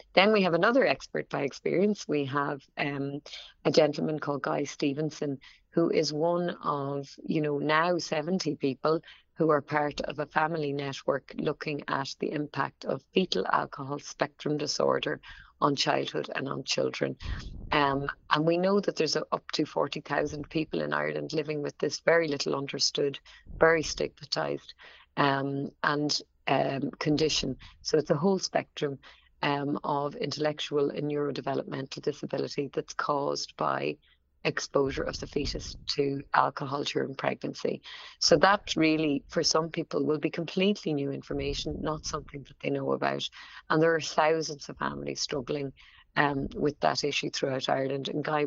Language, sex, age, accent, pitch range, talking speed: English, female, 30-49, Irish, 140-155 Hz, 155 wpm